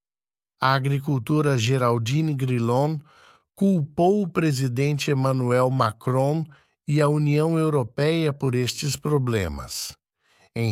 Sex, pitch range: male, 120-155 Hz